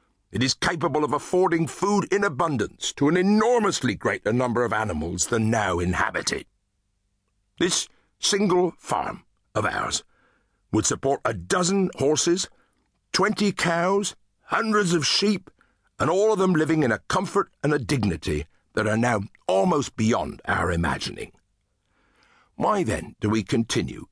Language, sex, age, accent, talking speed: English, male, 60-79, British, 140 wpm